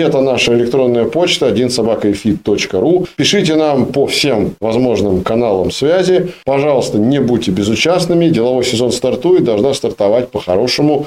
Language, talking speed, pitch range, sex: Russian, 125 wpm, 105-140 Hz, male